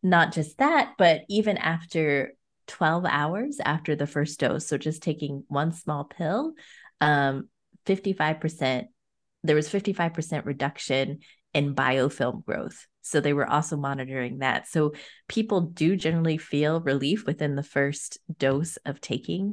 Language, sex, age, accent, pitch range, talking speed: English, female, 20-39, American, 140-165 Hz, 140 wpm